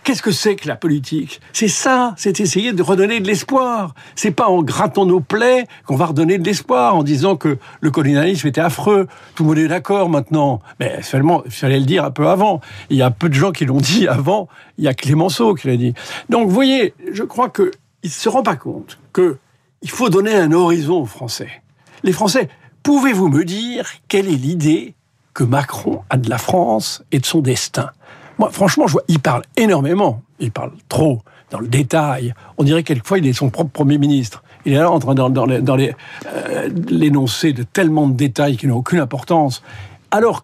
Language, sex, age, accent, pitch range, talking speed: French, male, 60-79, French, 140-195 Hz, 210 wpm